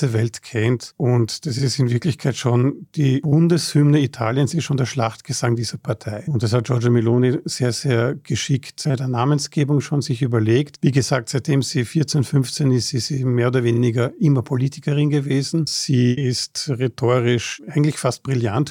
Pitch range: 120-145 Hz